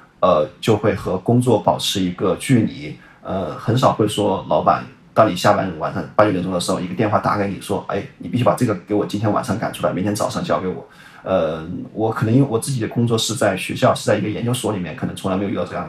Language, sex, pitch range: Chinese, male, 105-115 Hz